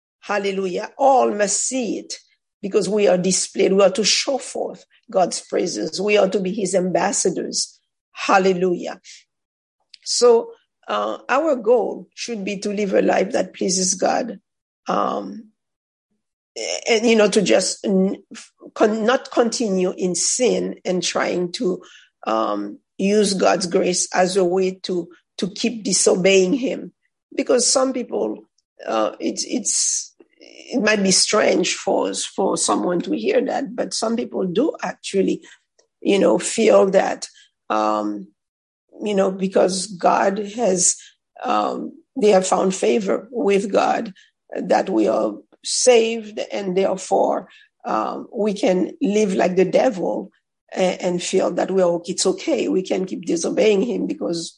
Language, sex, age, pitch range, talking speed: English, female, 50-69, 185-225 Hz, 140 wpm